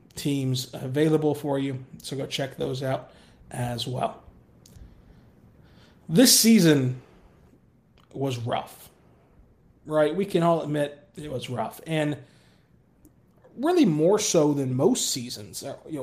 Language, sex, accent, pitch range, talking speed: English, male, American, 130-160 Hz, 115 wpm